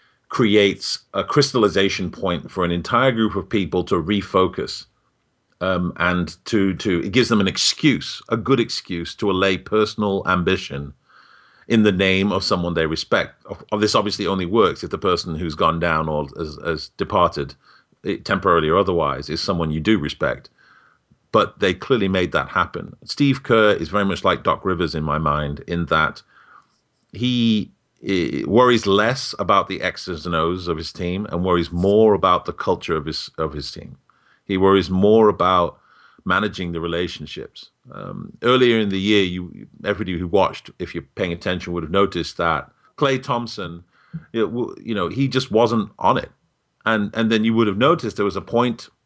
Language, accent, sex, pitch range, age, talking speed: English, British, male, 85-110 Hz, 40-59, 175 wpm